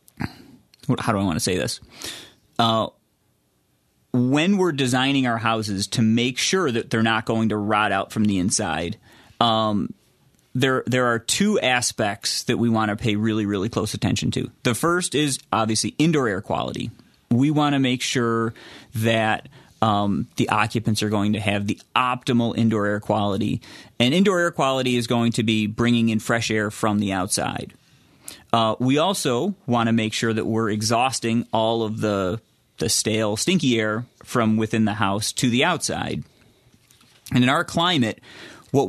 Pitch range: 110-125 Hz